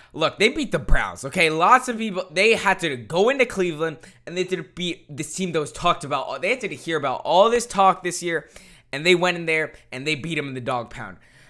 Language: English